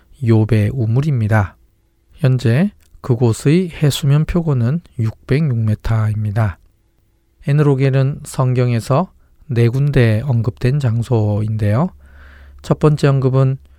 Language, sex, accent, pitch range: Korean, male, native, 110-135 Hz